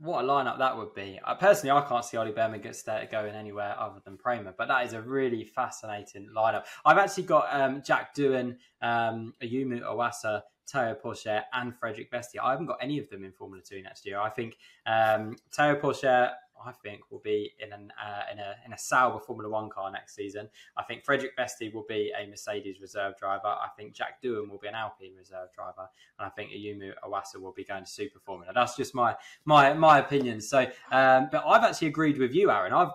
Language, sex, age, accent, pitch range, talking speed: English, male, 10-29, British, 105-135 Hz, 220 wpm